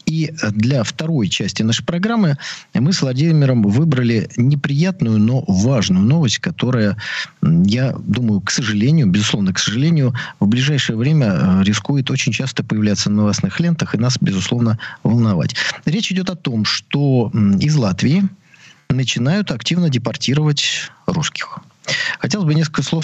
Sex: male